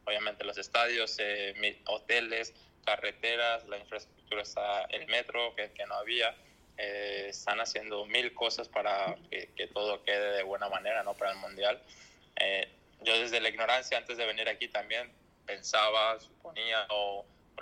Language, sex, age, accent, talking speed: English, male, 20-39, Spanish, 155 wpm